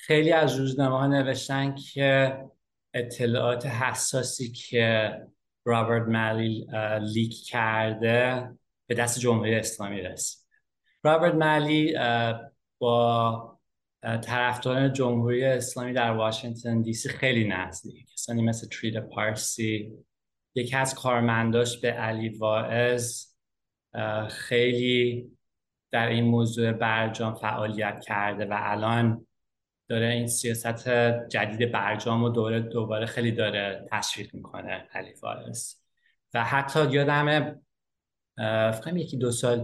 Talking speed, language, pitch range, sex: 105 wpm, English, 110-125 Hz, male